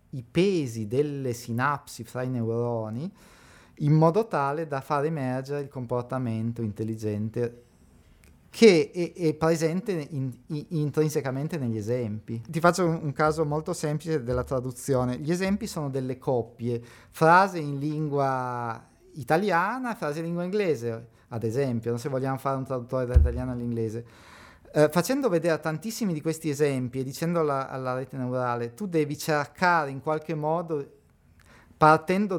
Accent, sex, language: native, male, Italian